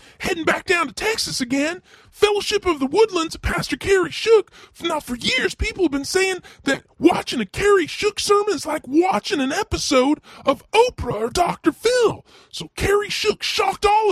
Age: 20-39